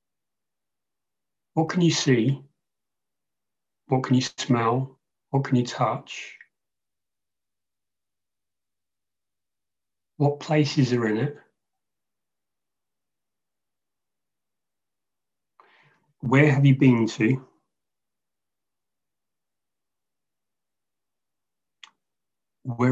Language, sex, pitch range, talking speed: English, male, 100-135 Hz, 60 wpm